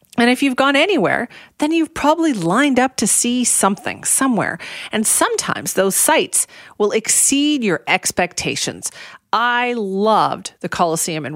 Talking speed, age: 145 wpm, 30-49